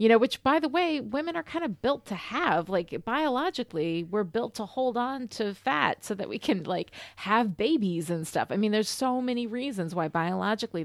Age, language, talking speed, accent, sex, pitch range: 30-49, English, 215 wpm, American, female, 180-240 Hz